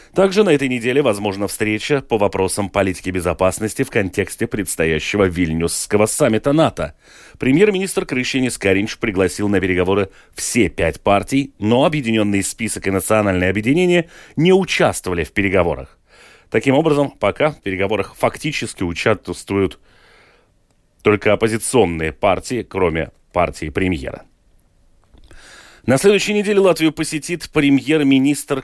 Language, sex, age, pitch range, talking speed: Russian, male, 30-49, 95-135 Hz, 110 wpm